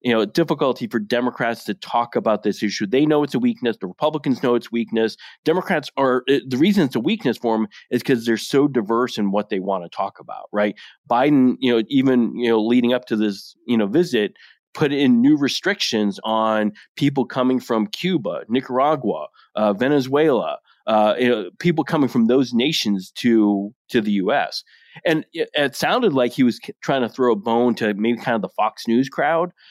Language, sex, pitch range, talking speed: English, male, 115-150 Hz, 200 wpm